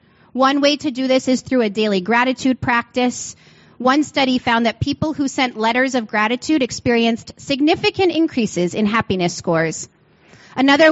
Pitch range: 215-265 Hz